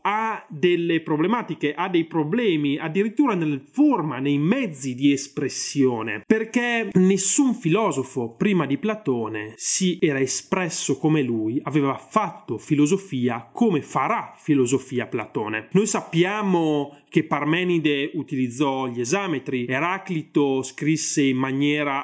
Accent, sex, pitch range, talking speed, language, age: native, male, 135-200 Hz, 115 wpm, Italian, 30-49